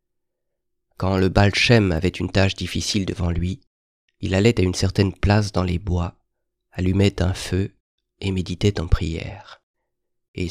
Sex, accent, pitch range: male, French, 90-105 Hz